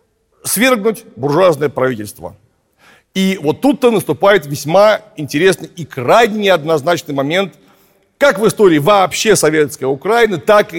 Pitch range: 135-195 Hz